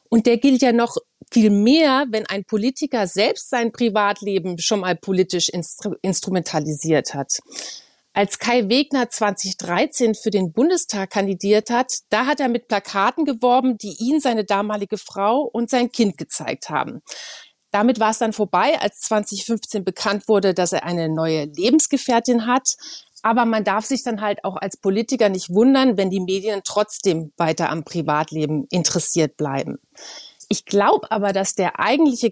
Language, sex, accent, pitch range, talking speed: German, female, German, 185-240 Hz, 160 wpm